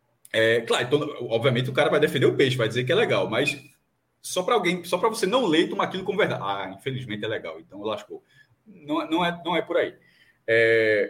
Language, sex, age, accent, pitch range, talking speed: Portuguese, male, 20-39, Brazilian, 130-195 Hz, 215 wpm